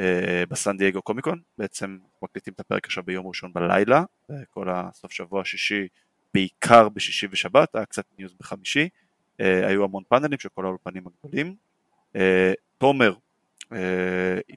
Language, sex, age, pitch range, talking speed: Hebrew, male, 20-39, 95-110 Hz, 135 wpm